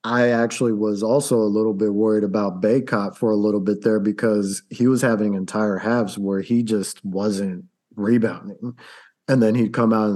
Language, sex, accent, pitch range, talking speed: English, male, American, 105-120 Hz, 190 wpm